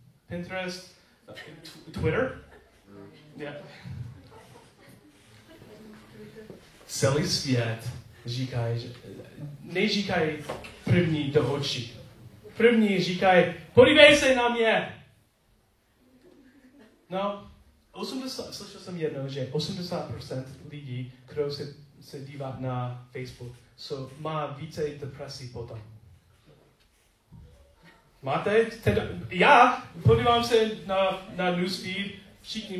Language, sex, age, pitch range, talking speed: Czech, male, 30-49, 135-175 Hz, 80 wpm